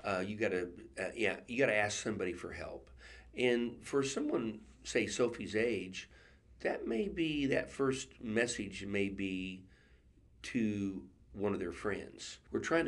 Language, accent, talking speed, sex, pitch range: English, American, 160 wpm, male, 95-110 Hz